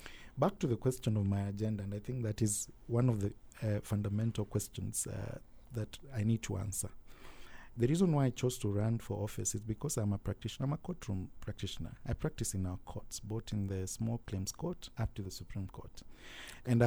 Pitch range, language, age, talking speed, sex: 105-125 Hz, English, 50-69, 210 wpm, male